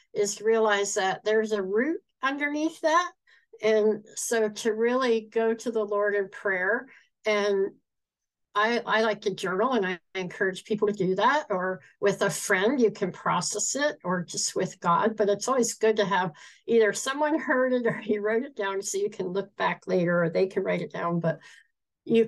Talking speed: 195 wpm